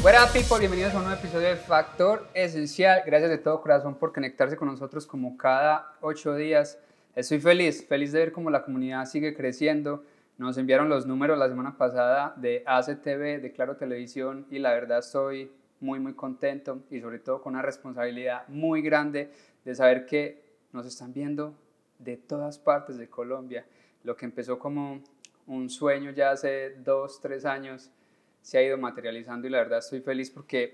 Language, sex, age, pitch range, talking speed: Spanish, male, 20-39, 130-150 Hz, 180 wpm